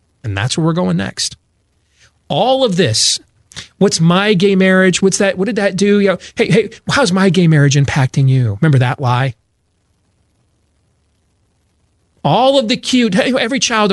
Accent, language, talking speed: American, English, 150 wpm